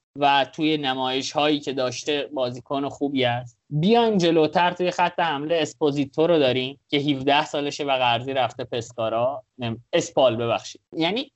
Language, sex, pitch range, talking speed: Persian, male, 140-200 Hz, 150 wpm